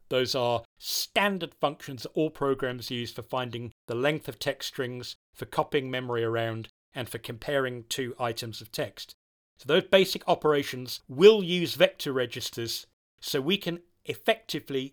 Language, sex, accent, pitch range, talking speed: English, male, British, 120-155 Hz, 155 wpm